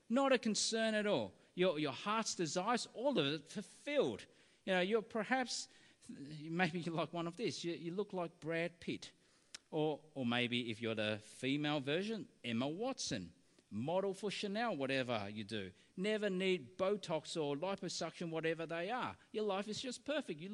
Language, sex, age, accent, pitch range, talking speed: English, male, 40-59, Australian, 145-215 Hz, 170 wpm